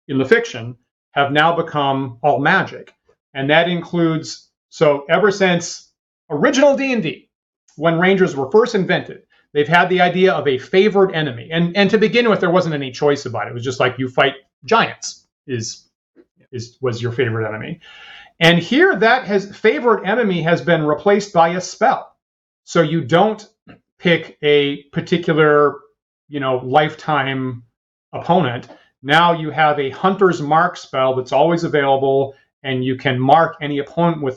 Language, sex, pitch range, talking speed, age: English, male, 135-185 Hz, 160 wpm, 40-59